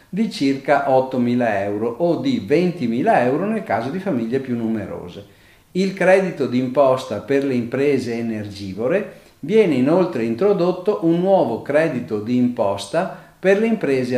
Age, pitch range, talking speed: 50-69, 120-185 Hz, 135 wpm